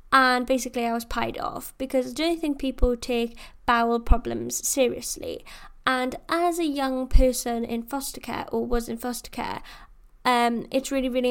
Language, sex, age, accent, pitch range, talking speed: English, female, 10-29, British, 230-260 Hz, 170 wpm